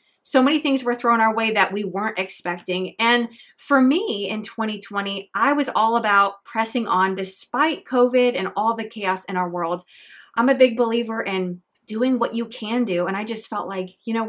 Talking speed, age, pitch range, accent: 200 wpm, 20-39, 195-245 Hz, American